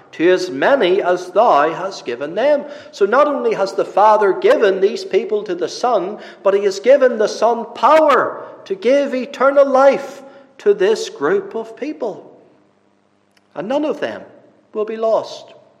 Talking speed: 160 wpm